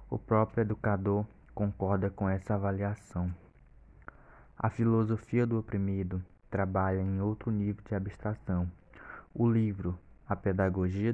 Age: 20-39